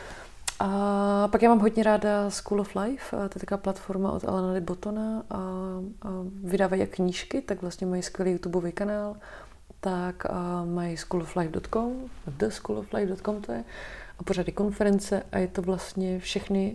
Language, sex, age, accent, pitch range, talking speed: Czech, female, 30-49, native, 170-195 Hz, 145 wpm